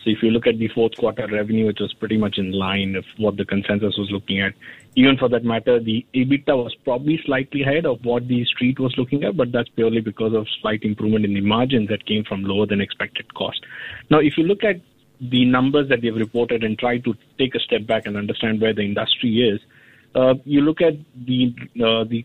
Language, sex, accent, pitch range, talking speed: English, male, Indian, 110-125 Hz, 230 wpm